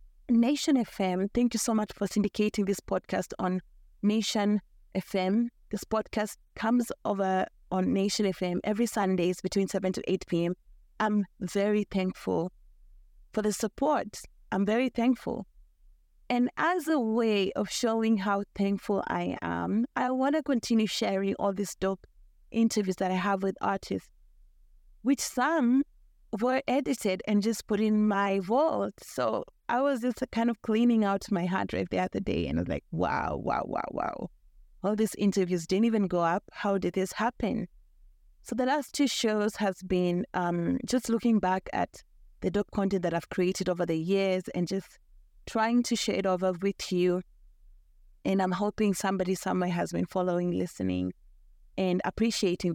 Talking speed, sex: 165 wpm, female